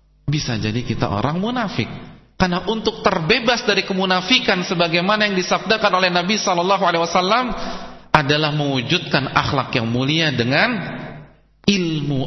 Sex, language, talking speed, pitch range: male, English, 110 wpm, 105-150 Hz